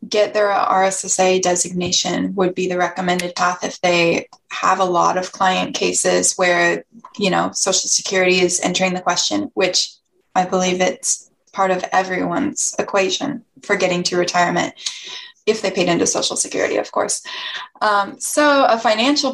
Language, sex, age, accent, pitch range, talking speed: English, female, 20-39, American, 185-225 Hz, 155 wpm